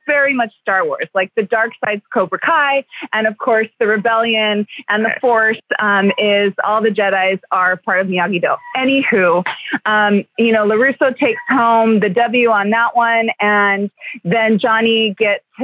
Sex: female